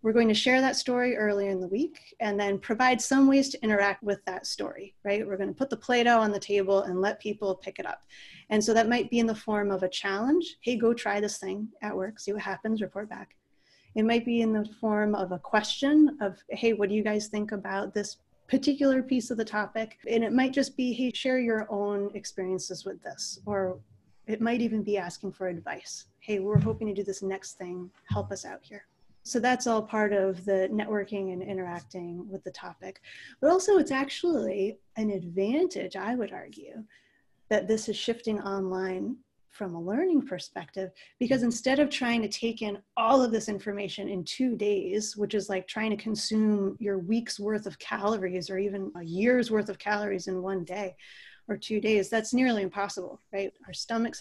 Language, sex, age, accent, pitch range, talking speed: English, female, 30-49, American, 195-230 Hz, 210 wpm